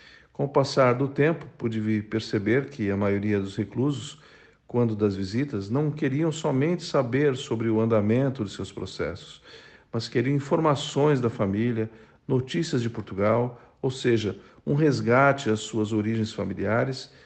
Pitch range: 110-135 Hz